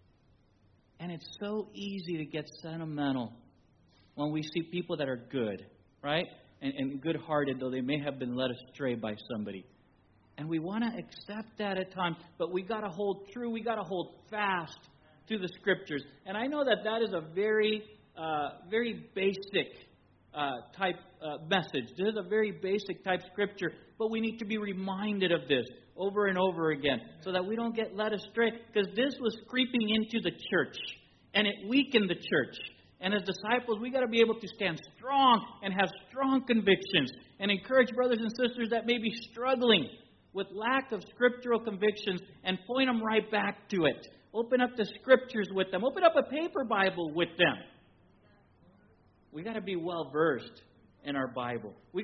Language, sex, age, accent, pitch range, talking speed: English, male, 40-59, American, 155-220 Hz, 185 wpm